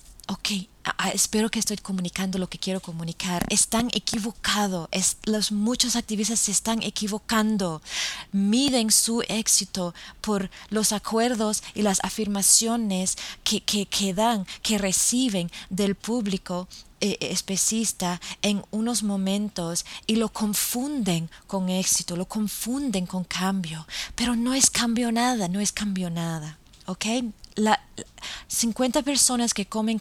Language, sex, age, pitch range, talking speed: English, female, 20-39, 180-215 Hz, 130 wpm